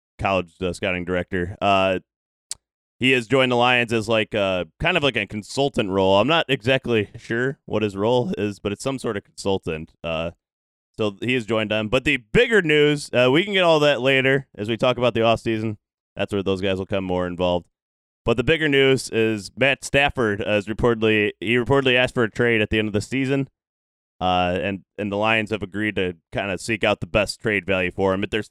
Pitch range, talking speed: 95-125 Hz, 225 wpm